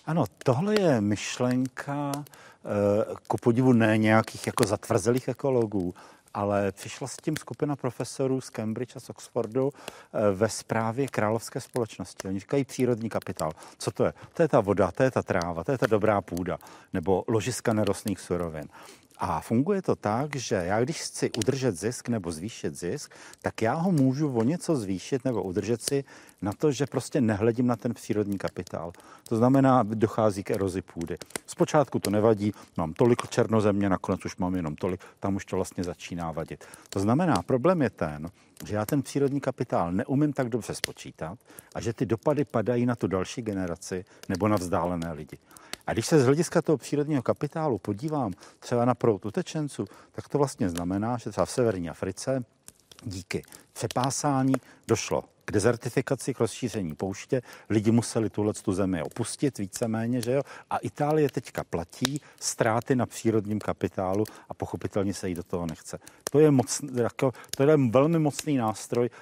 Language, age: Czech, 50-69